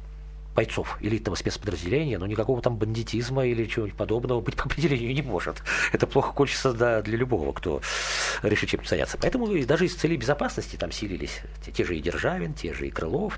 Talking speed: 185 wpm